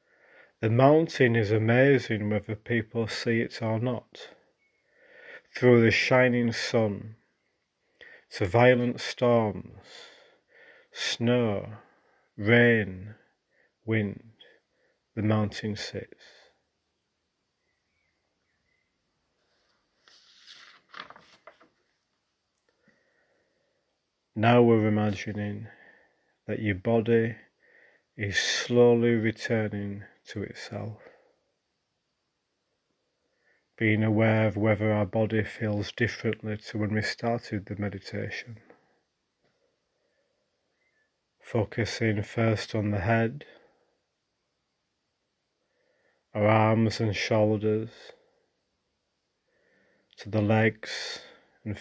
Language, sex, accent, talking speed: English, male, British, 70 wpm